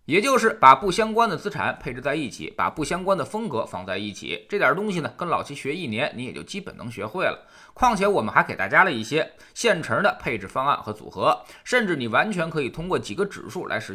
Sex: male